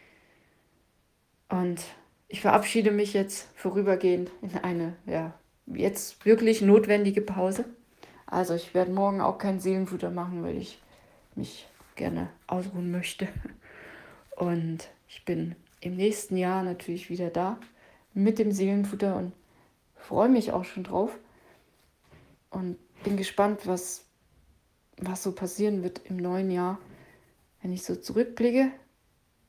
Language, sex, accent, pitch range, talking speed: German, female, German, 180-205 Hz, 120 wpm